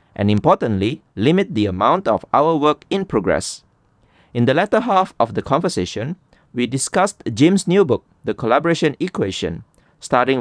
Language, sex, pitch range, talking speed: English, male, 100-155 Hz, 150 wpm